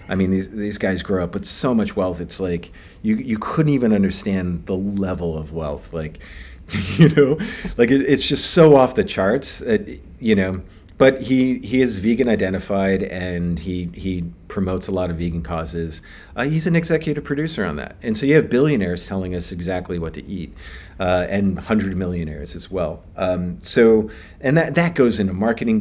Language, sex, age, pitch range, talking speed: English, male, 40-59, 90-125 Hz, 195 wpm